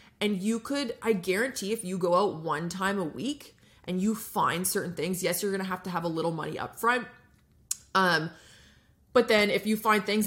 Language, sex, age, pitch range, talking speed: English, female, 20-39, 175-225 Hz, 215 wpm